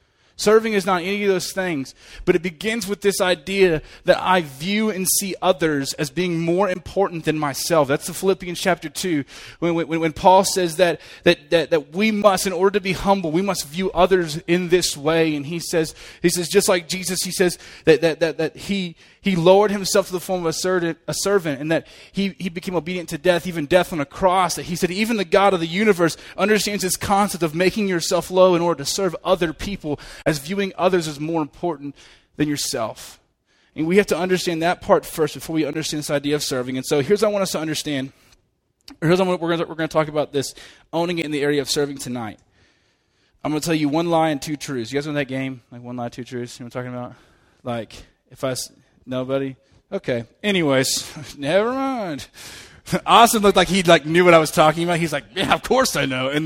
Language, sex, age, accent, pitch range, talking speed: English, male, 20-39, American, 145-190 Hz, 230 wpm